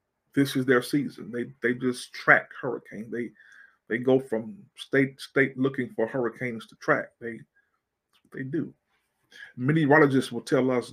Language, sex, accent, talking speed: English, male, American, 160 wpm